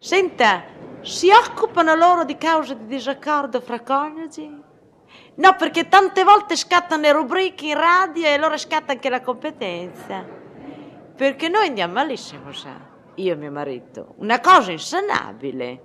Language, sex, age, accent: Italian, female, 40-59, native